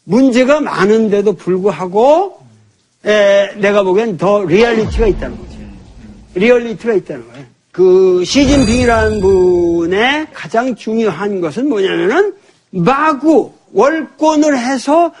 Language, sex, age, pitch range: Korean, male, 50-69, 220-330 Hz